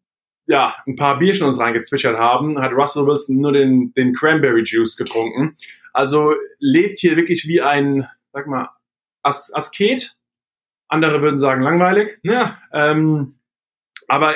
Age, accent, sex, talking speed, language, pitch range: 20-39, German, male, 140 wpm, German, 140-175 Hz